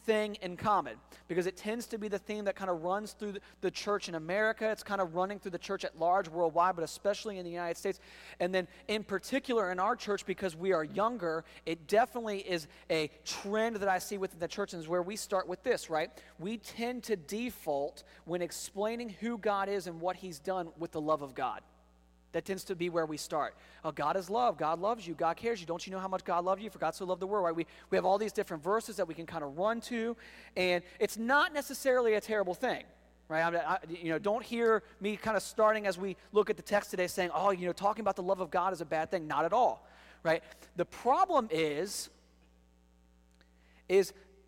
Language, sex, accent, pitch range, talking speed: English, male, American, 170-210 Hz, 235 wpm